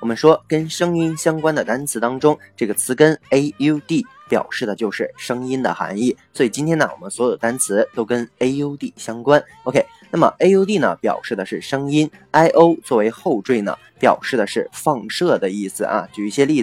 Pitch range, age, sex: 115-155 Hz, 20-39, male